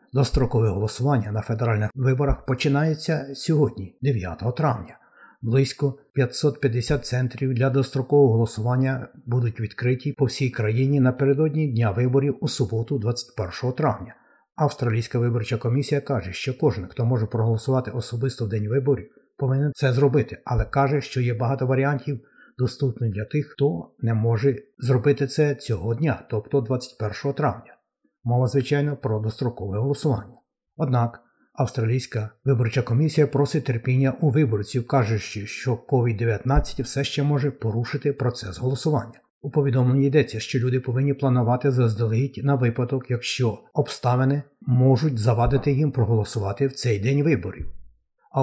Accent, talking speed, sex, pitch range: native, 130 wpm, male, 115-140 Hz